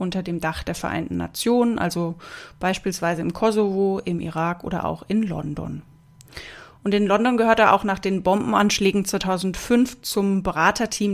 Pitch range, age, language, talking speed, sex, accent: 170-215 Hz, 30-49, German, 150 wpm, female, German